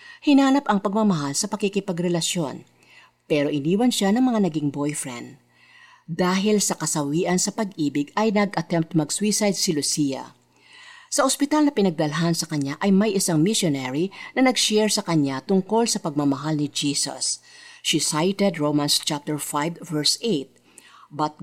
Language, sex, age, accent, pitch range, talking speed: Filipino, female, 50-69, native, 150-215 Hz, 135 wpm